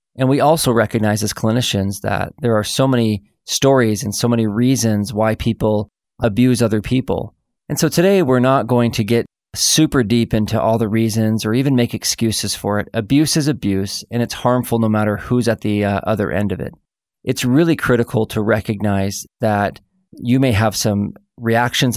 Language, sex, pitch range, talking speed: English, male, 105-120 Hz, 185 wpm